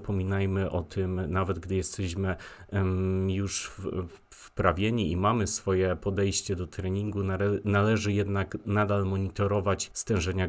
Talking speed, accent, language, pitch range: 110 wpm, native, Polish, 90-100 Hz